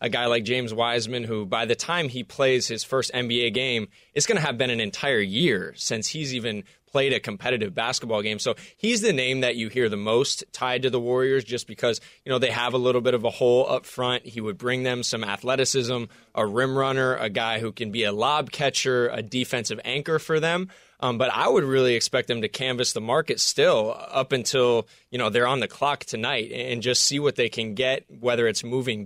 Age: 20-39